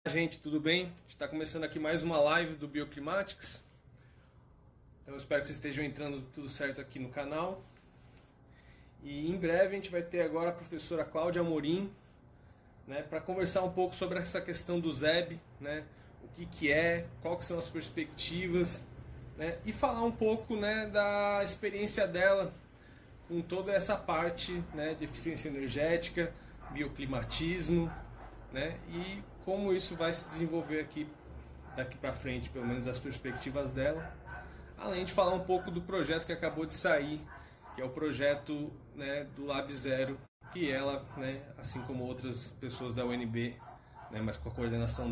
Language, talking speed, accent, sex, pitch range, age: Portuguese, 160 wpm, Brazilian, male, 130-170 Hz, 20-39